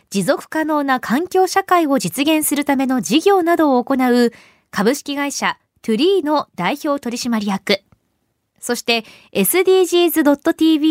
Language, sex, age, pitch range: Japanese, female, 20-39, 225-325 Hz